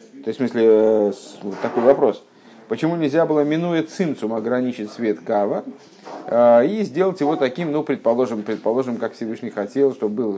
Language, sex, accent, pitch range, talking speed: Russian, male, native, 115-160 Hz, 145 wpm